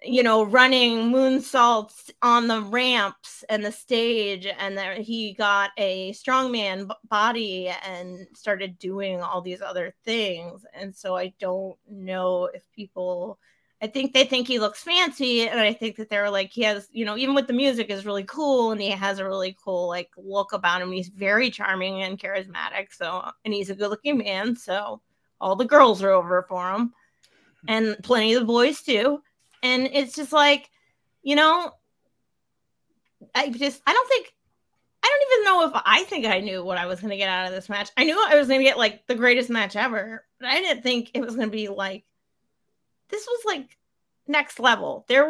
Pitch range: 195-265 Hz